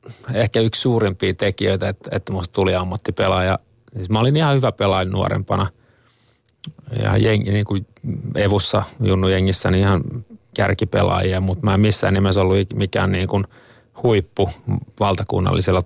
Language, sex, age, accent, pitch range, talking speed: Finnish, male, 30-49, native, 95-115 Hz, 140 wpm